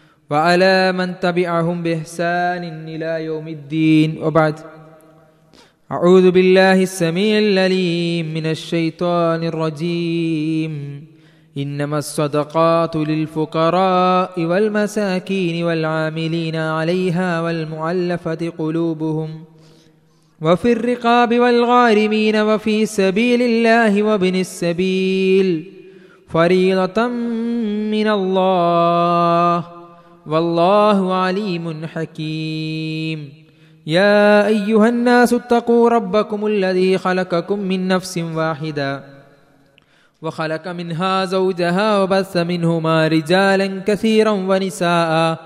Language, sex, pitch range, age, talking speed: Malayalam, male, 160-210 Hz, 20-39, 75 wpm